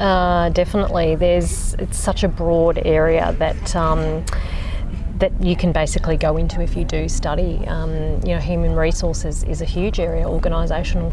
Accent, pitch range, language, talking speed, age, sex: Australian, 80-95 Hz, English, 160 wpm, 30-49, female